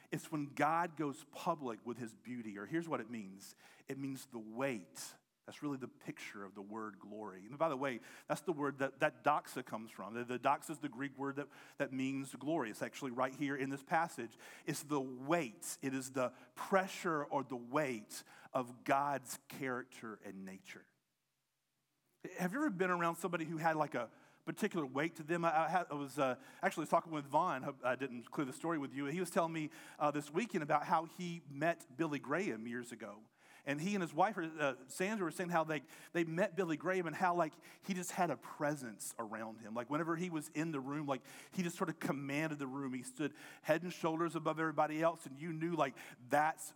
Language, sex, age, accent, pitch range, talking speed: English, male, 40-59, American, 135-165 Hz, 215 wpm